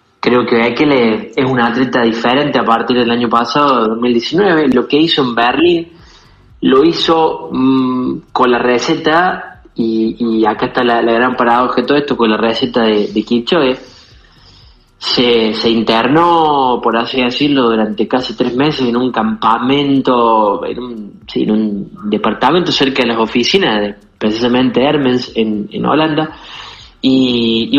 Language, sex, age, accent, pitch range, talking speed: Spanish, male, 20-39, Argentinian, 115-140 Hz, 150 wpm